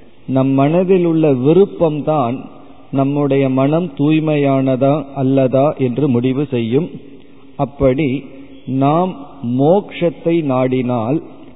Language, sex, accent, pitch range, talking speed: Tamil, male, native, 125-155 Hz, 80 wpm